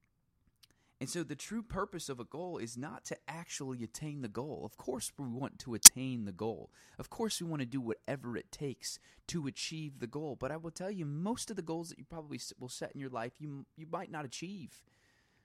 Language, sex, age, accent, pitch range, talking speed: English, male, 20-39, American, 110-155 Hz, 225 wpm